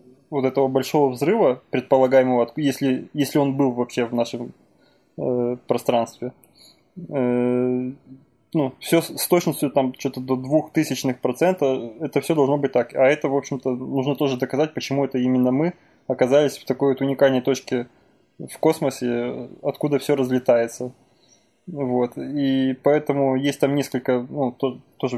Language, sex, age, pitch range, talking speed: Russian, male, 20-39, 125-145 Hz, 145 wpm